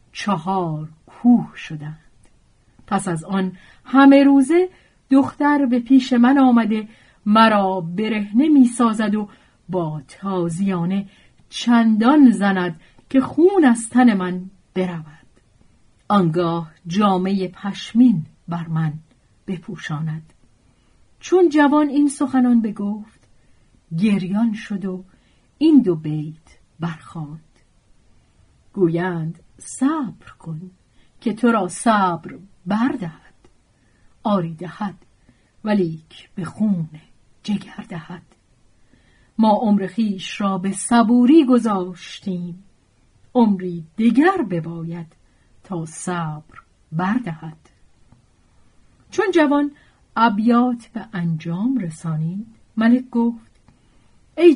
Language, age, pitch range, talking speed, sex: Persian, 40-59, 170-235 Hz, 90 wpm, female